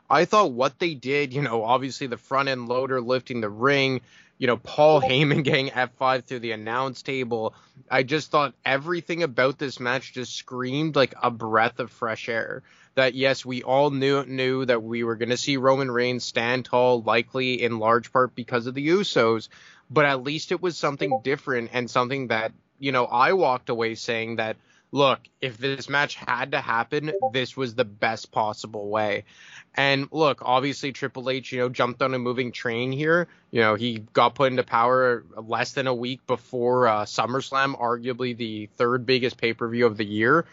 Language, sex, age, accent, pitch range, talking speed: English, male, 20-39, American, 120-135 Hz, 190 wpm